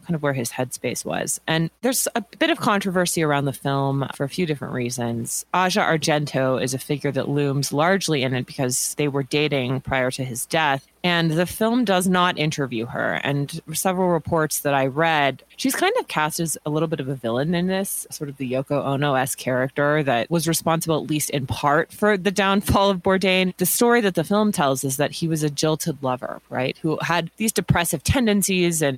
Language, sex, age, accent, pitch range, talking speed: English, female, 20-39, American, 140-180 Hz, 210 wpm